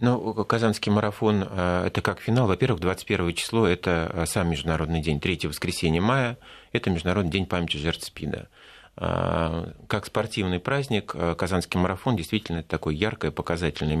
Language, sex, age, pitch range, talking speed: Russian, male, 30-49, 80-100 Hz, 135 wpm